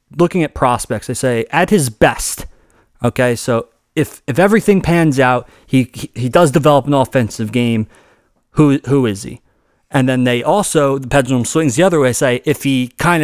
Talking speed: 185 wpm